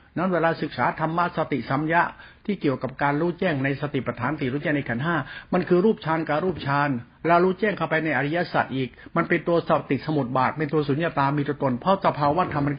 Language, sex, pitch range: Thai, male, 140-180 Hz